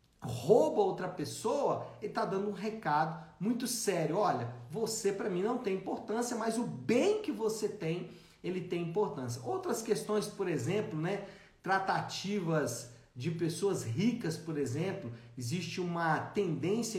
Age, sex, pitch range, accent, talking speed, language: 50-69, male, 155-215 Hz, Brazilian, 140 wpm, Portuguese